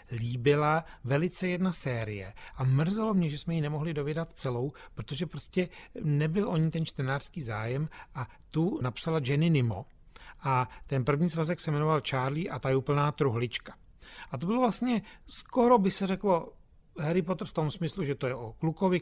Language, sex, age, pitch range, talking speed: Czech, male, 40-59, 125-165 Hz, 175 wpm